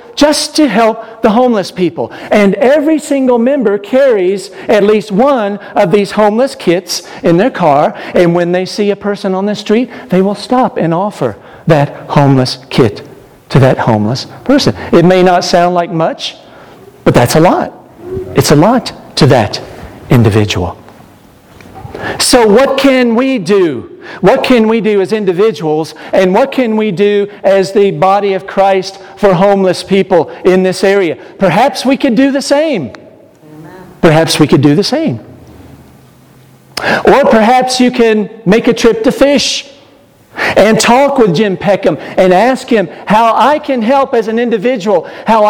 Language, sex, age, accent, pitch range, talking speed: English, male, 50-69, American, 180-245 Hz, 160 wpm